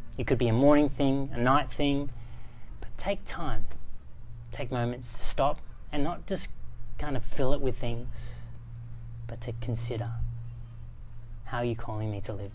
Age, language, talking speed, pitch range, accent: 30-49, English, 165 wpm, 115-135 Hz, Australian